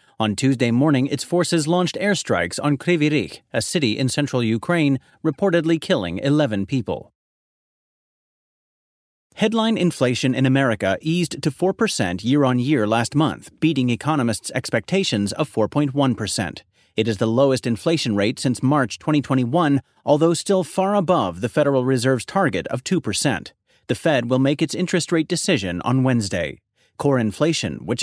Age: 30-49